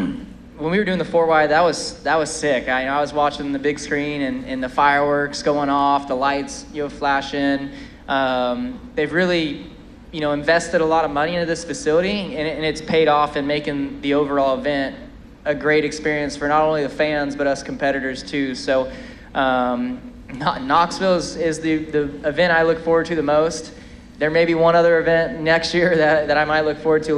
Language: English